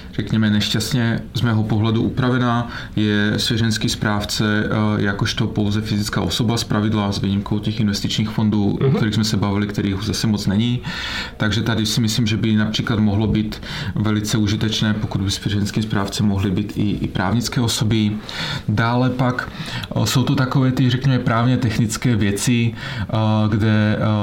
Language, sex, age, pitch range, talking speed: Czech, male, 30-49, 105-115 Hz, 150 wpm